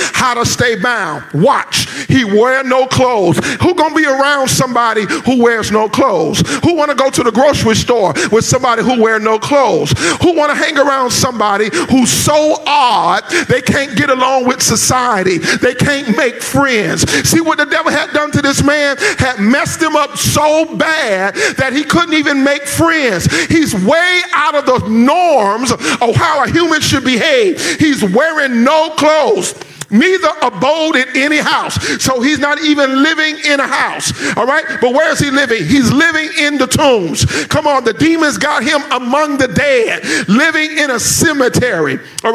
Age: 40-59